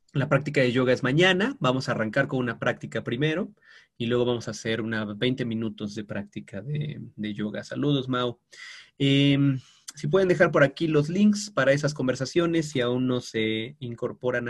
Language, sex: Spanish, male